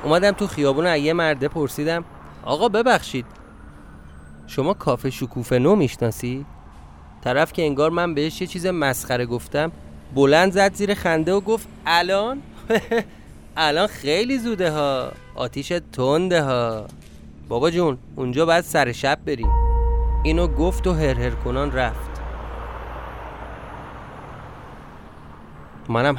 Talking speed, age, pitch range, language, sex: 110 wpm, 30-49, 115-155 Hz, Persian, male